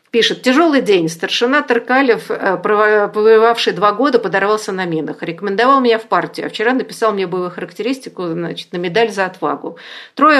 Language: Russian